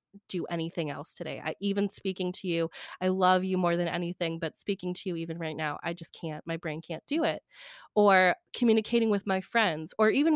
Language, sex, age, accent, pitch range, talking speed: English, female, 20-39, American, 175-225 Hz, 215 wpm